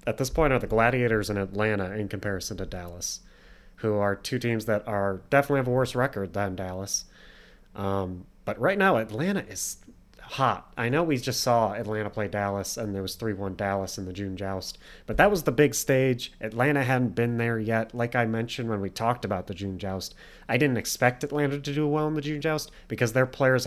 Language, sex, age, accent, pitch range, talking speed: English, male, 30-49, American, 100-130 Hz, 215 wpm